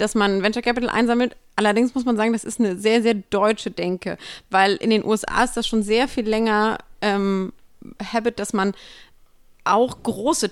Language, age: German, 30-49